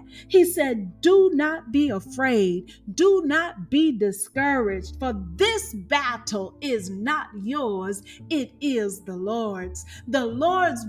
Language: English